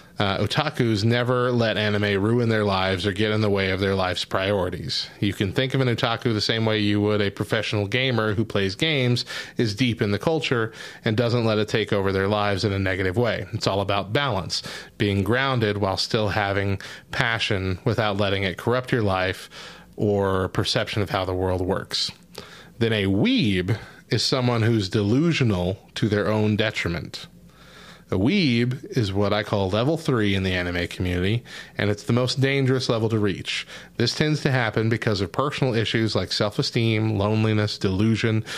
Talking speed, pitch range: 180 wpm, 100-120 Hz